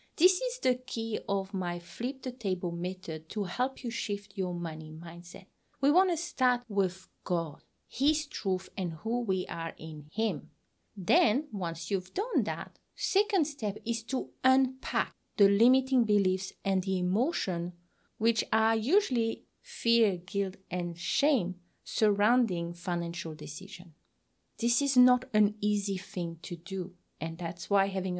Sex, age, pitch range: female, 30-49, 185-245 Hz